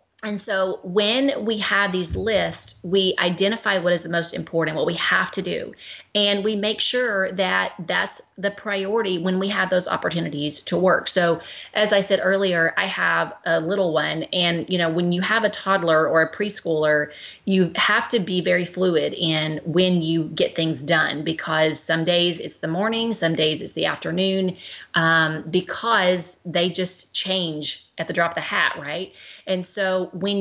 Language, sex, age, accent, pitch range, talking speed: English, female, 30-49, American, 165-195 Hz, 185 wpm